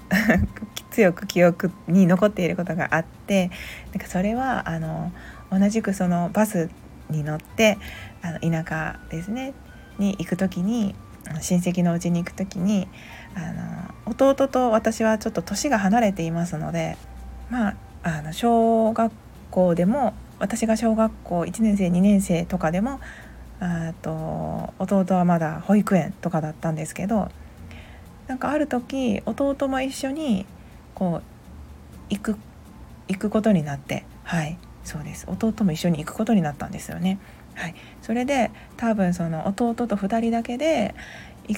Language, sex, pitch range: Japanese, female, 165-220 Hz